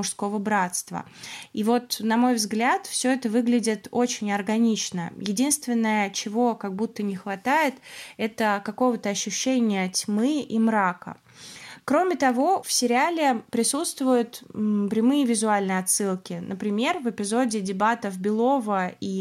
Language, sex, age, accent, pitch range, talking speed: Russian, female, 20-39, native, 200-250 Hz, 120 wpm